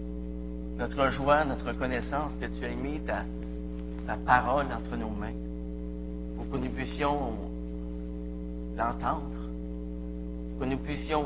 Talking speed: 125 wpm